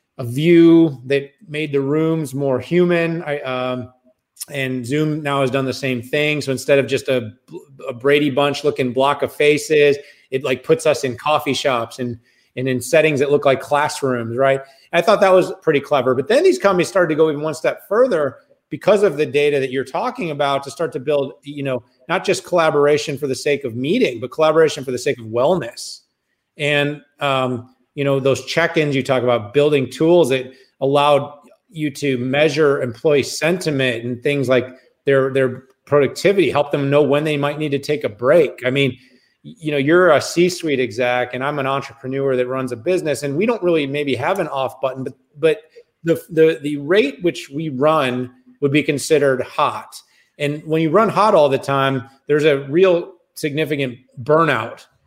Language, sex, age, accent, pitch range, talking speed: English, male, 30-49, American, 130-155 Hz, 195 wpm